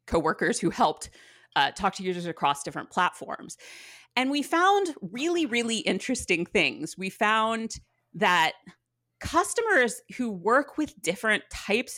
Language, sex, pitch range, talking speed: English, female, 180-265 Hz, 130 wpm